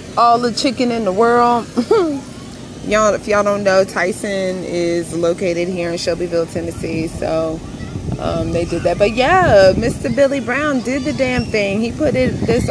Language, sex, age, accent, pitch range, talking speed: English, female, 30-49, American, 170-225 Hz, 170 wpm